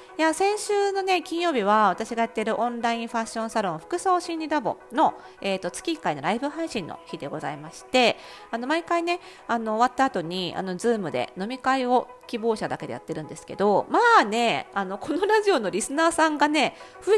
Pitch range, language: 185-285 Hz, Japanese